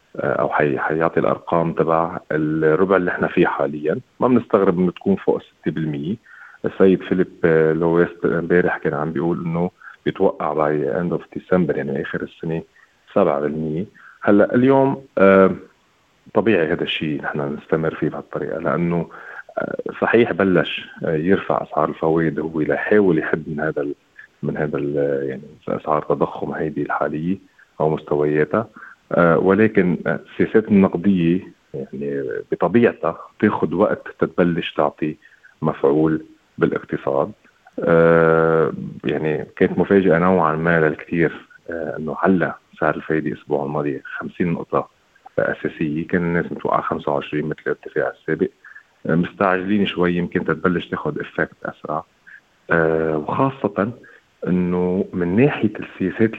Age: 40-59